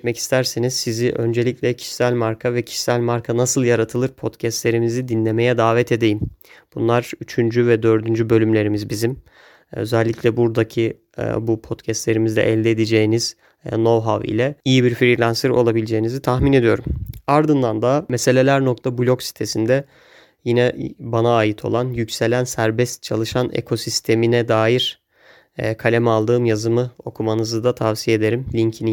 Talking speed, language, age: 115 wpm, Turkish, 30-49